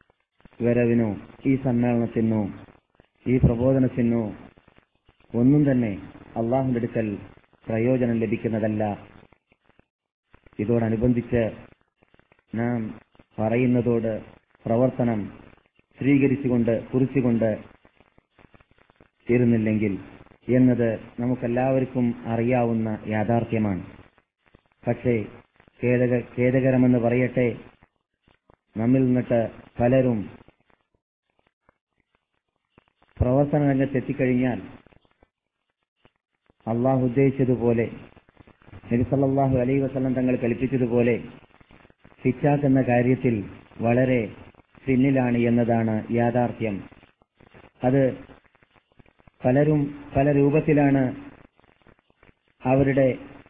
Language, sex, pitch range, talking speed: Malayalam, male, 115-130 Hz, 55 wpm